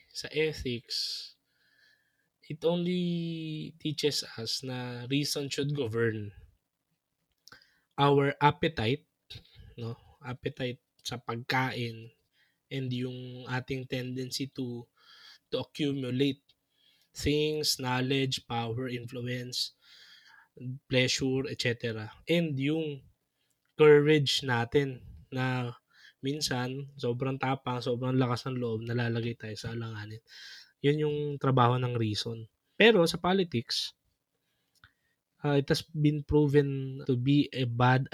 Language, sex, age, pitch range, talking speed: Filipino, male, 20-39, 120-145 Hz, 100 wpm